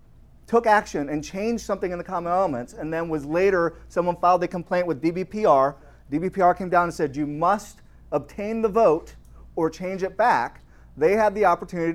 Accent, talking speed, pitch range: American, 185 wpm, 140-195 Hz